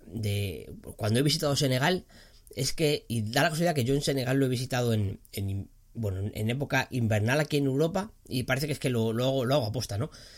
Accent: Spanish